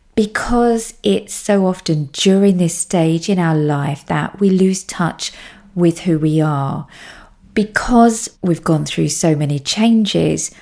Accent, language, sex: British, English, female